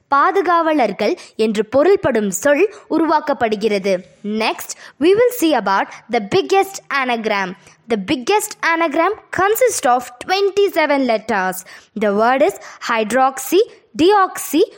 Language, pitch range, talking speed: Tamil, 215-340 Hz, 100 wpm